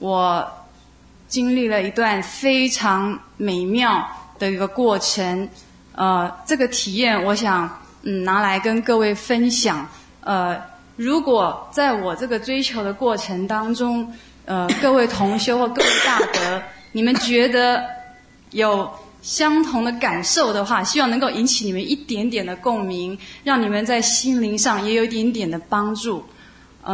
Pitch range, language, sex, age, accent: 195-245 Hz, English, female, 20-39, Chinese